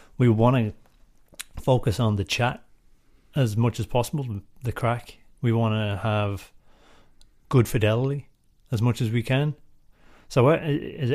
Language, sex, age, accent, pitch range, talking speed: English, male, 30-49, British, 100-120 Hz, 140 wpm